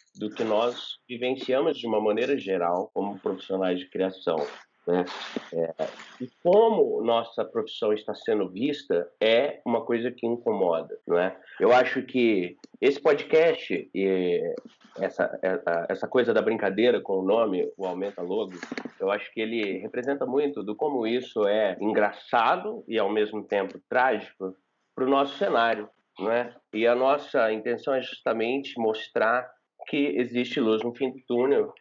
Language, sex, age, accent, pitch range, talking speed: Portuguese, male, 30-49, Brazilian, 105-145 Hz, 150 wpm